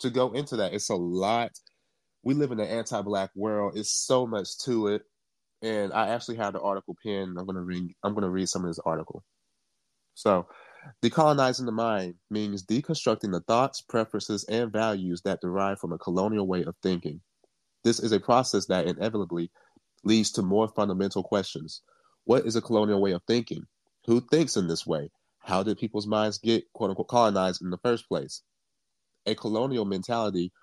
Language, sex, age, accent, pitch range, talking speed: English, male, 30-49, American, 95-115 Hz, 175 wpm